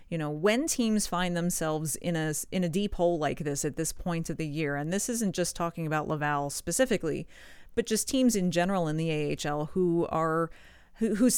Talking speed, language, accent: 200 wpm, English, American